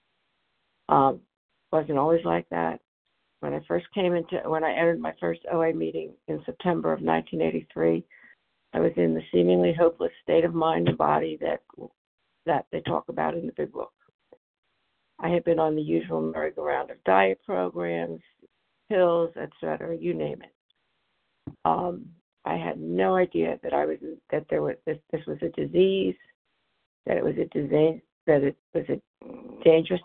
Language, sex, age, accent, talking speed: English, female, 60-79, American, 165 wpm